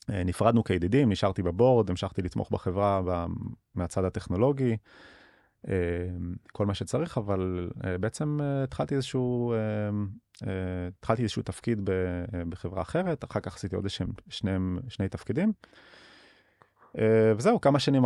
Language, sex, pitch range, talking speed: Hebrew, male, 95-115 Hz, 105 wpm